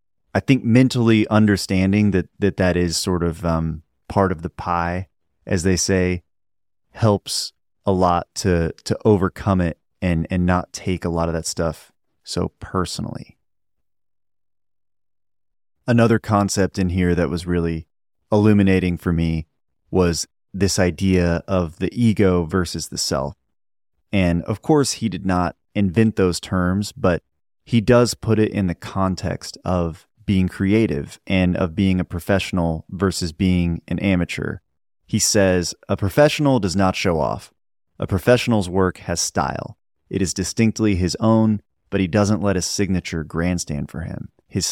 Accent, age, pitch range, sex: American, 30-49, 85-105 Hz, male